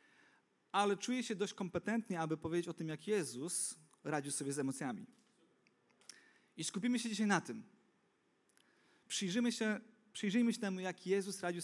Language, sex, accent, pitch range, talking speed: Polish, male, native, 155-215 Hz, 145 wpm